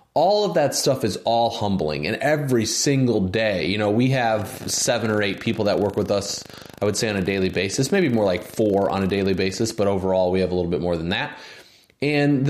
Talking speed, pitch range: 235 wpm, 100-135 Hz